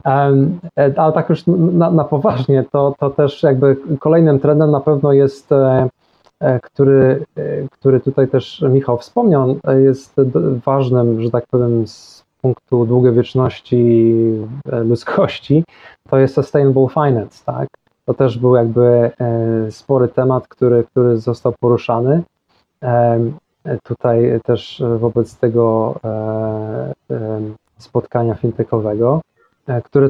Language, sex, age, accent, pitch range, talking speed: Polish, male, 20-39, native, 120-140 Hz, 105 wpm